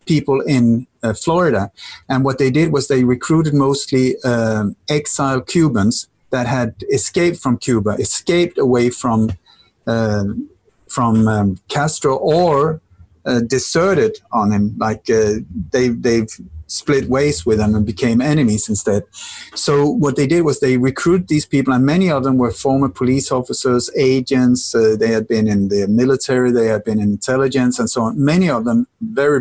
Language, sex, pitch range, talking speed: English, male, 120-150 Hz, 165 wpm